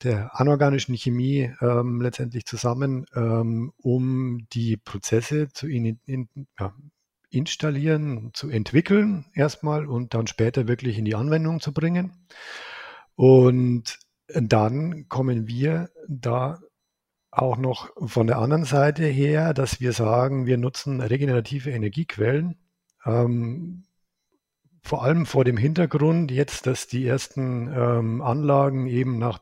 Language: German